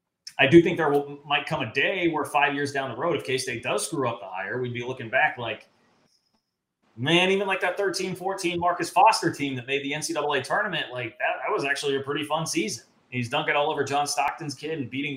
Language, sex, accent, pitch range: English, male, American, 120-150 Hz